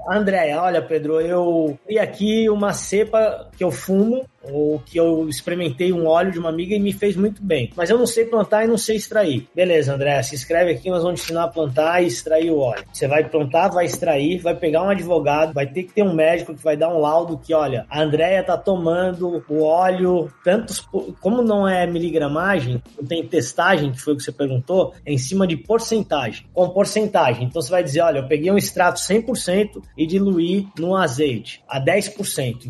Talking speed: 210 wpm